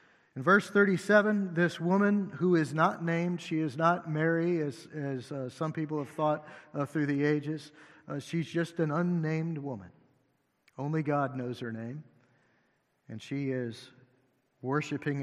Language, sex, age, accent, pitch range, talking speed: English, male, 50-69, American, 145-180 Hz, 155 wpm